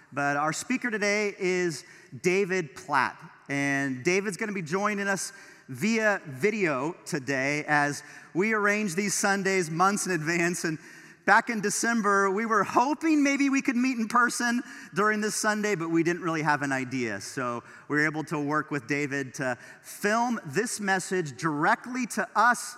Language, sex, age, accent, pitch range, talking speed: English, male, 40-59, American, 145-205 Hz, 165 wpm